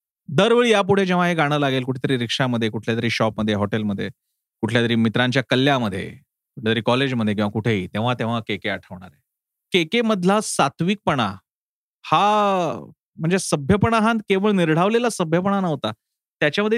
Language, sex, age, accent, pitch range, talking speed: Marathi, male, 30-49, native, 130-195 Hz, 70 wpm